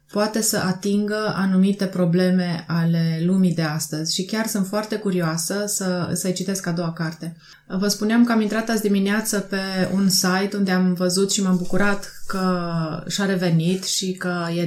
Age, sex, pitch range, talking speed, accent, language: 20-39, female, 170-195 Hz, 170 wpm, native, Romanian